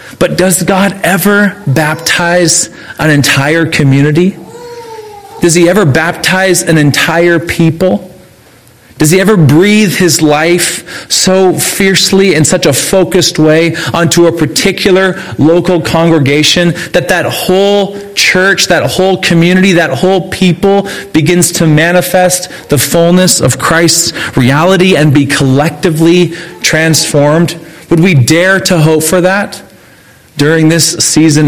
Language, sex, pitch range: English, male, 135-175 Hz